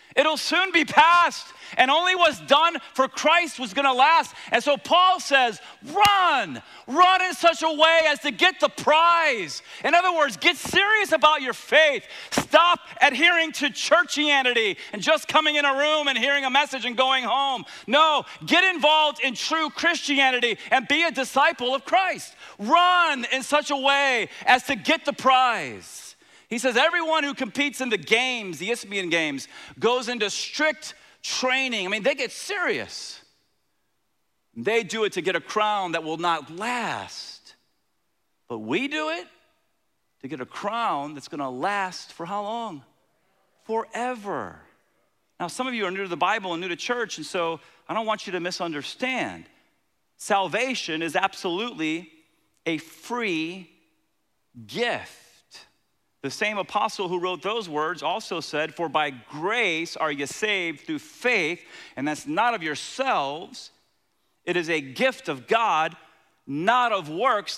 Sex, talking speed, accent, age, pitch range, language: male, 160 wpm, American, 40-59, 195-310 Hz, English